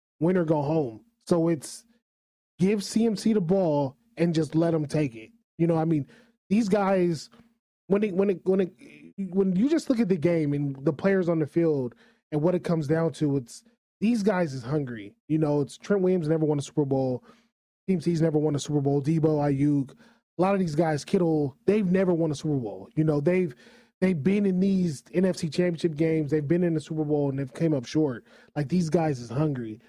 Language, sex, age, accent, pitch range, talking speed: English, male, 20-39, American, 150-195 Hz, 215 wpm